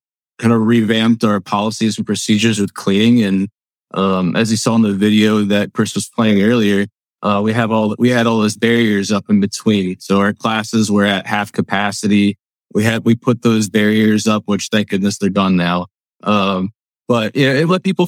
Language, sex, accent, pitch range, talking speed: English, male, American, 100-115 Hz, 205 wpm